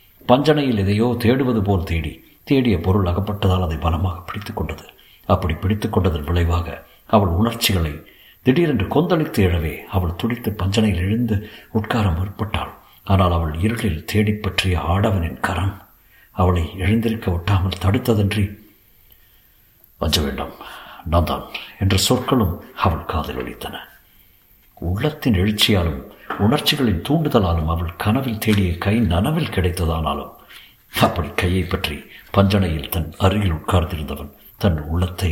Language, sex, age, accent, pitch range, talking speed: Tamil, male, 60-79, native, 85-110 Hz, 100 wpm